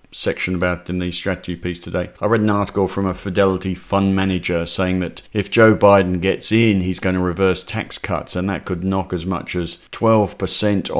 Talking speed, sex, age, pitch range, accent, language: 200 wpm, male, 50-69, 90-105 Hz, British, English